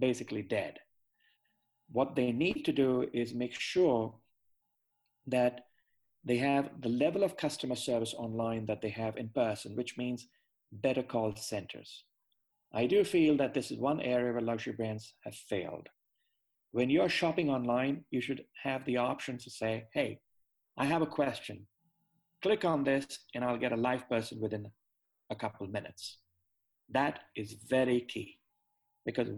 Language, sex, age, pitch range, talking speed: English, male, 40-59, 115-140 Hz, 155 wpm